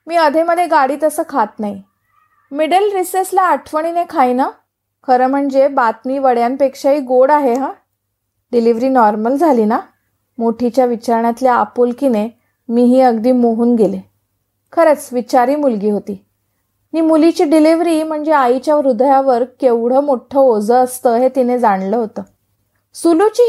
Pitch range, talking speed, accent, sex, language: 230-310 Hz, 125 wpm, native, female, Marathi